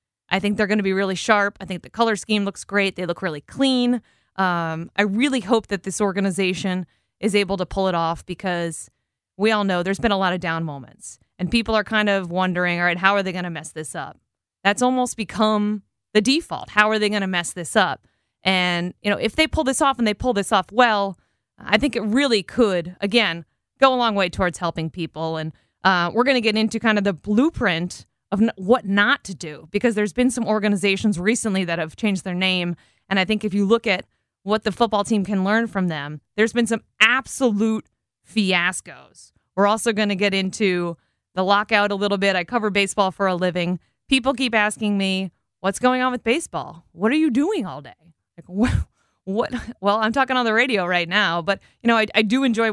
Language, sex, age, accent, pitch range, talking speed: English, female, 30-49, American, 180-220 Hz, 225 wpm